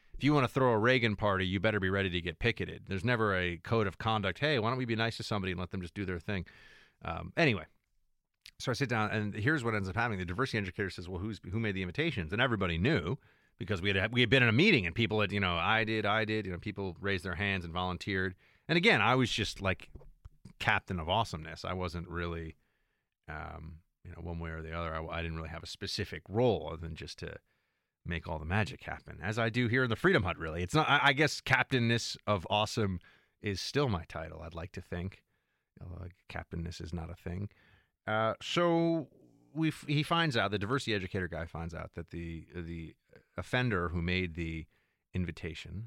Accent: American